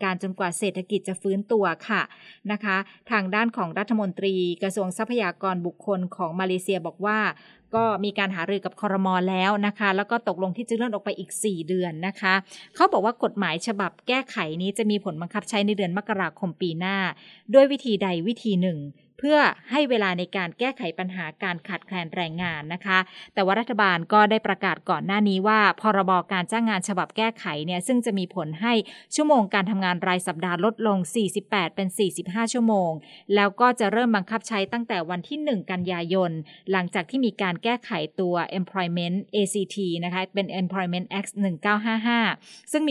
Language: English